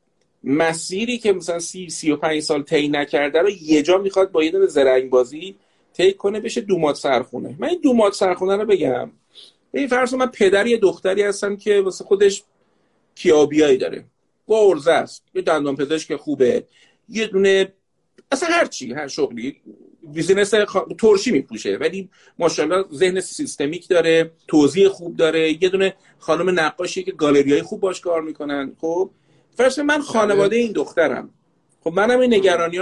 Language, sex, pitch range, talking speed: Persian, male, 145-215 Hz, 145 wpm